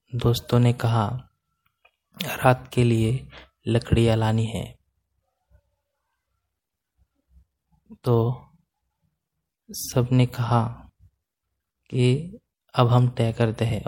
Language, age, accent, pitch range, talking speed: Hindi, 20-39, native, 105-125 Hz, 80 wpm